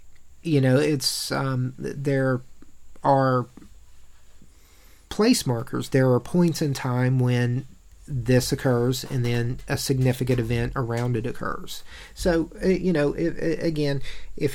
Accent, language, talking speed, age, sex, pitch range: American, English, 130 wpm, 40-59, male, 120-145 Hz